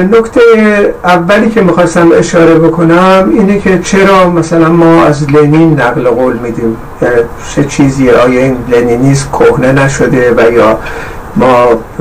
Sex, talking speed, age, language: male, 130 wpm, 50-69, Persian